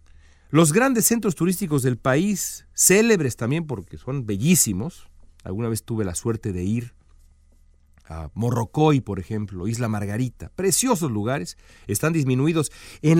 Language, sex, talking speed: Spanish, male, 130 wpm